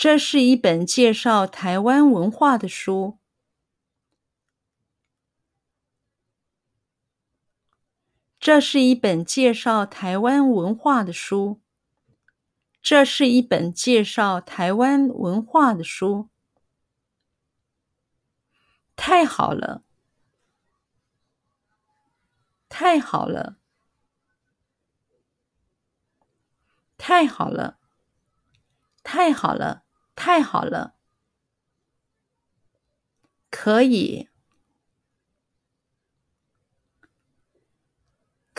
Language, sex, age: Chinese, female, 50-69